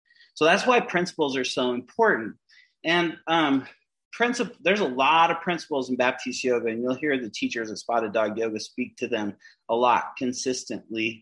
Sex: male